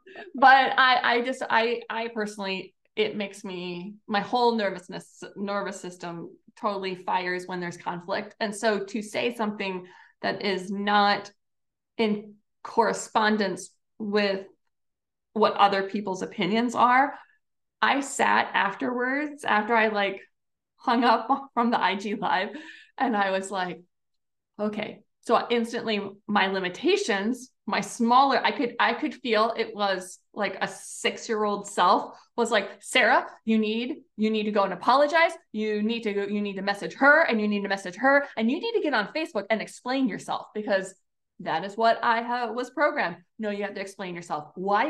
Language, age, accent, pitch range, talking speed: English, 20-39, American, 195-240 Hz, 165 wpm